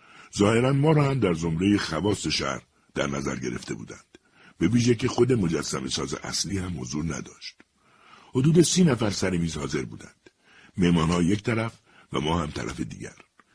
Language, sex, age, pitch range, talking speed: Persian, male, 60-79, 85-110 Hz, 170 wpm